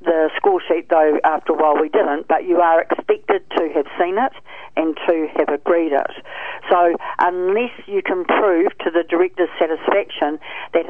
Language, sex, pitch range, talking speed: English, female, 165-225 Hz, 175 wpm